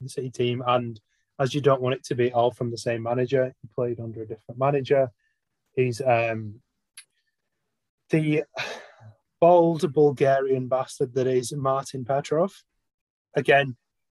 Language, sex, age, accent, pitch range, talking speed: English, male, 30-49, British, 120-145 Hz, 140 wpm